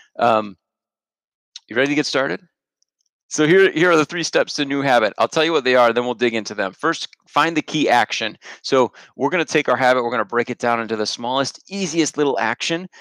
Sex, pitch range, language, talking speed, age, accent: male, 115-145 Hz, English, 235 wpm, 30-49, American